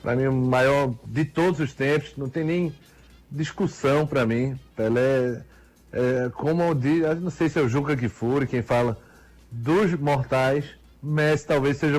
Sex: male